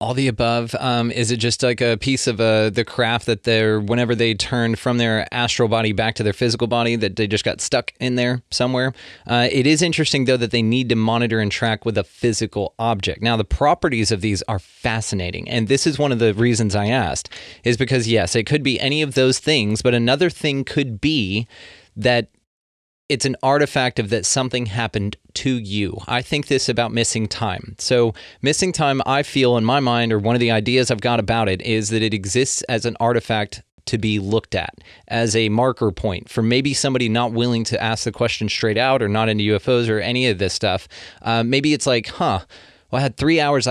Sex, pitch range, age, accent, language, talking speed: male, 110-130 Hz, 30-49, American, English, 220 wpm